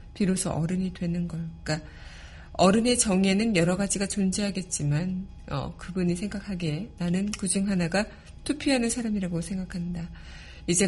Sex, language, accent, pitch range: female, Korean, native, 165-205 Hz